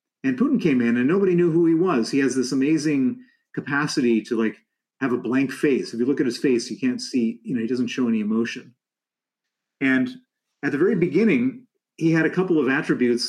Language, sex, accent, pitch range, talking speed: English, male, American, 120-195 Hz, 215 wpm